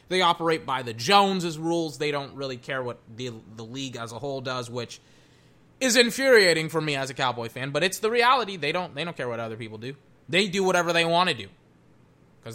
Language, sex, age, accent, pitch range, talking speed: English, male, 20-39, American, 130-185 Hz, 230 wpm